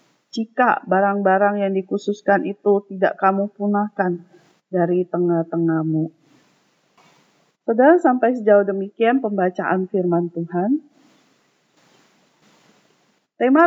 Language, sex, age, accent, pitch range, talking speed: Indonesian, female, 30-49, native, 195-265 Hz, 80 wpm